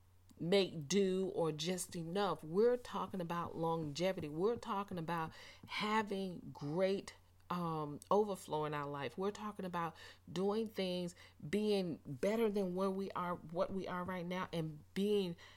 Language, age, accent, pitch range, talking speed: English, 40-59, American, 160-200 Hz, 145 wpm